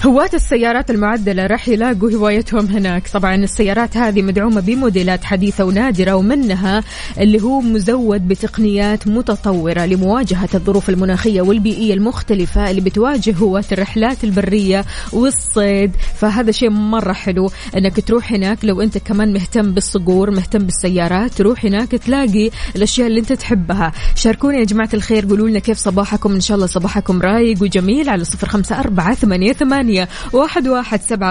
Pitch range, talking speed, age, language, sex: 200-235 Hz, 145 wpm, 20-39, Arabic, female